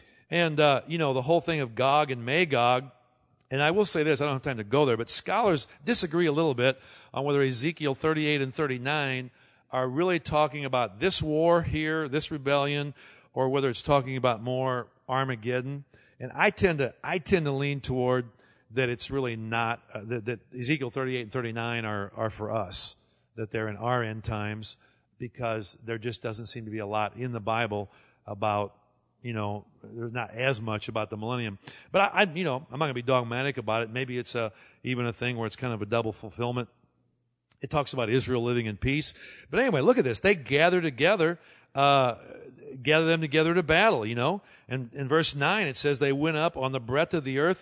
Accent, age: American, 50-69